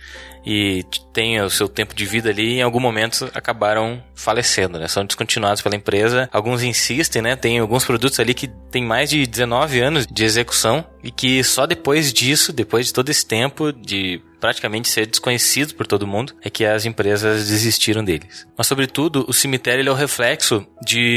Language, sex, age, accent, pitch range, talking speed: Portuguese, male, 20-39, Brazilian, 105-125 Hz, 185 wpm